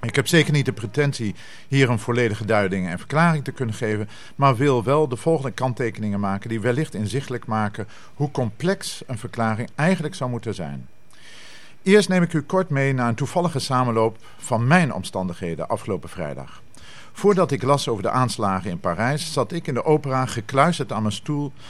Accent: Dutch